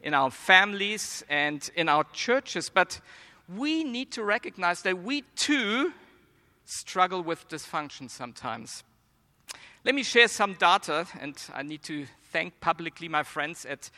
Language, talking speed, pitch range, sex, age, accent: English, 140 wpm, 160-210 Hz, male, 50-69, German